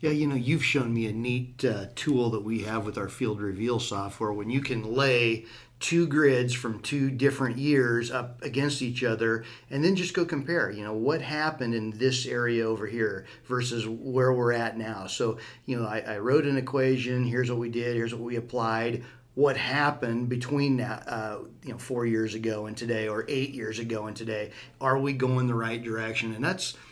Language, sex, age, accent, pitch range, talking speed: English, male, 40-59, American, 115-140 Hz, 205 wpm